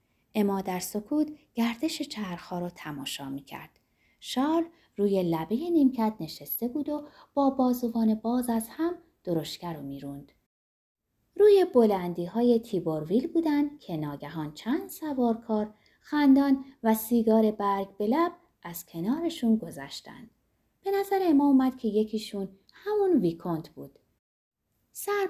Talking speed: 120 wpm